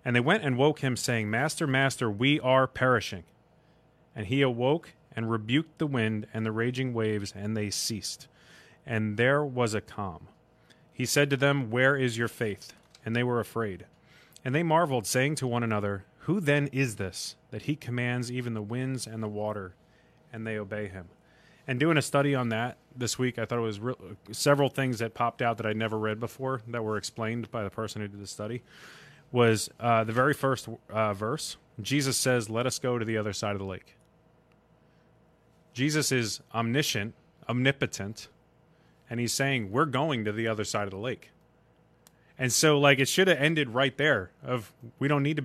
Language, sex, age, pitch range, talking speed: English, male, 30-49, 110-140 Hz, 195 wpm